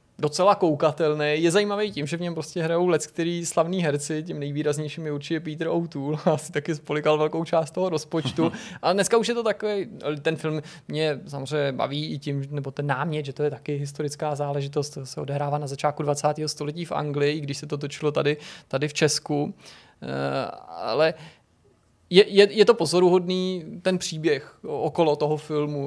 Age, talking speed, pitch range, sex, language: 20-39, 175 wpm, 150-170 Hz, male, Czech